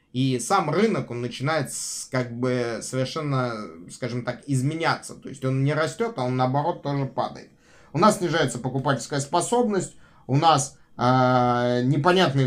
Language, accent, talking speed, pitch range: Russian, native, 145 wpm, 125-165 Hz